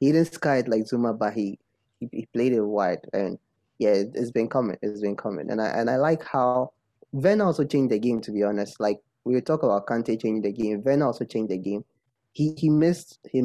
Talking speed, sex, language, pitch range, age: 235 wpm, male, English, 105-130 Hz, 20-39